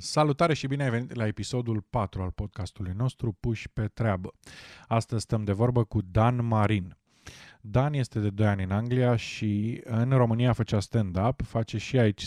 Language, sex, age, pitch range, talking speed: Romanian, male, 20-39, 105-120 Hz, 175 wpm